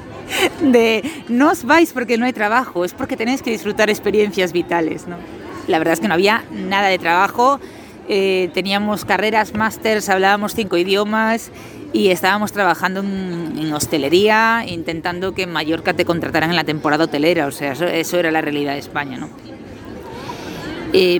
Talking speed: 165 wpm